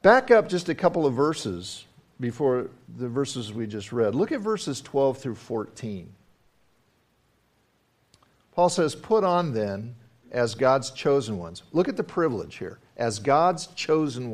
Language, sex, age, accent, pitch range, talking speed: English, male, 50-69, American, 115-155 Hz, 150 wpm